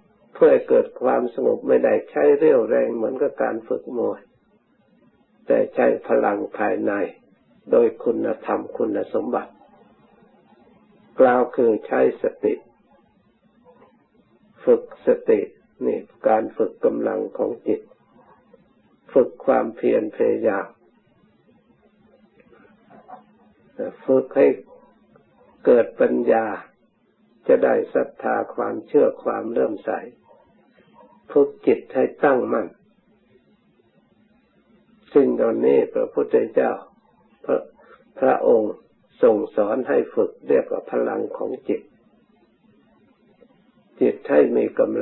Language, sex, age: Thai, male, 60-79